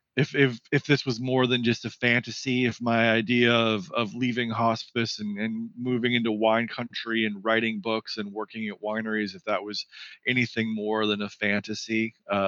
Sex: male